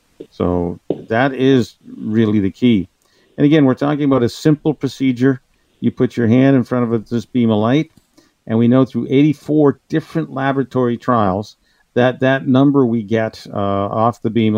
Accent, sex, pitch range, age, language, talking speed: American, male, 110-130 Hz, 50-69, English, 175 wpm